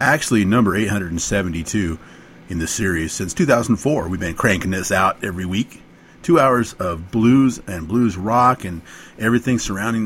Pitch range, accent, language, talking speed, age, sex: 95-125 Hz, American, English, 150 wpm, 40-59, male